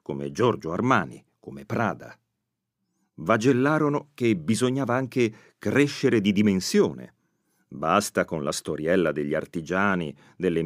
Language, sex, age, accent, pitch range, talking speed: Italian, male, 40-59, native, 90-125 Hz, 105 wpm